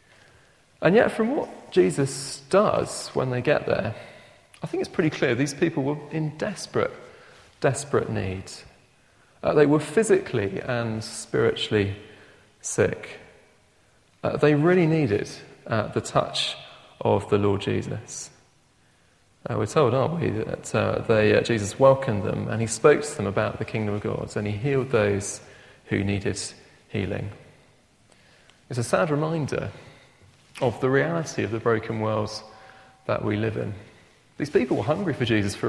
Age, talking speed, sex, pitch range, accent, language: 30-49, 150 wpm, male, 105-135 Hz, British, English